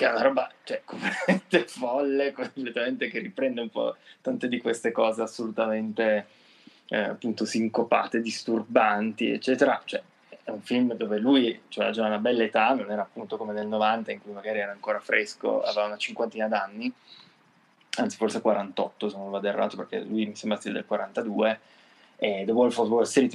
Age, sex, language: 20-39, male, Italian